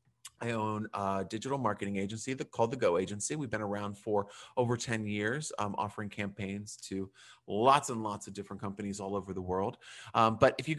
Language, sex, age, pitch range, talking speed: English, male, 30-49, 100-135 Hz, 195 wpm